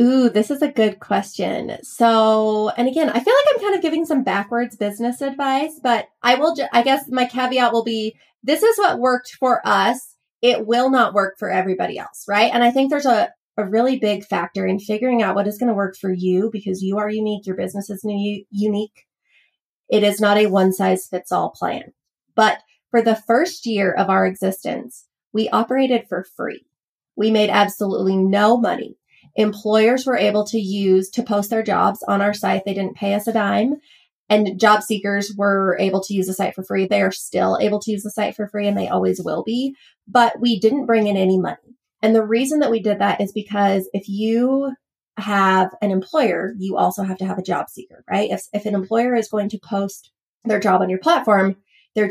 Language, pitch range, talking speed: English, 195-240 Hz, 215 wpm